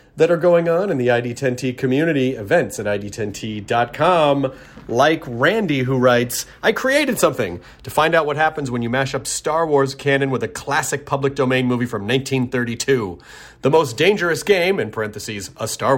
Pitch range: 110-145 Hz